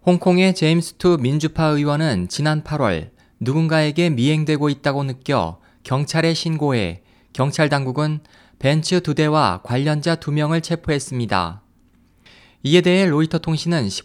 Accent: native